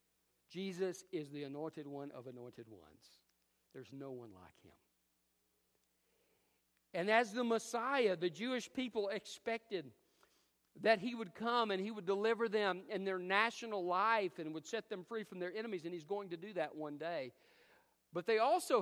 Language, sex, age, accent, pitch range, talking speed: English, male, 50-69, American, 130-215 Hz, 170 wpm